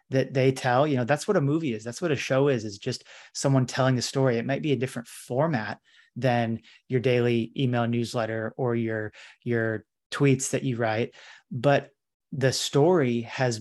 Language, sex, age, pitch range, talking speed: English, male, 30-49, 125-145 Hz, 190 wpm